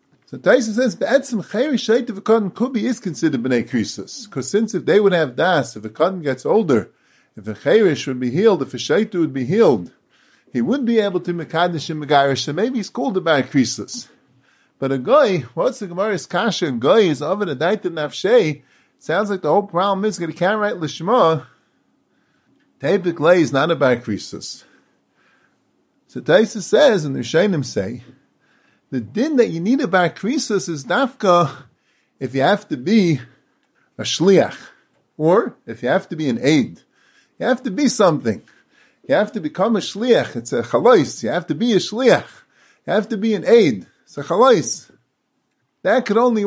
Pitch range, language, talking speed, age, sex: 155-225 Hz, English, 190 wpm, 30-49, male